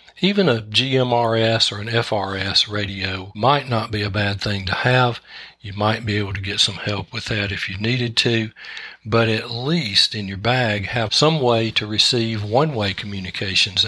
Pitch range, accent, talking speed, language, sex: 105-125 Hz, American, 180 wpm, English, male